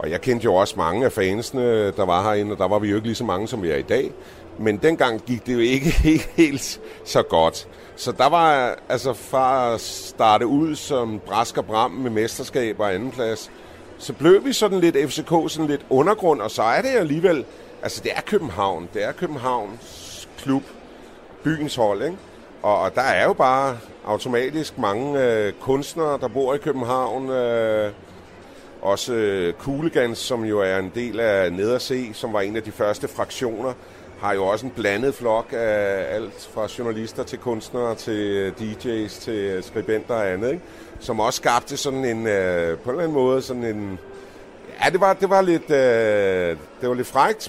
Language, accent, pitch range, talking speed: Danish, native, 105-140 Hz, 185 wpm